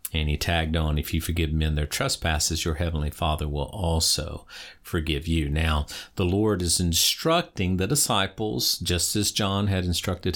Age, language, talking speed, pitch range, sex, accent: 50-69, English, 170 wpm, 80-100 Hz, male, American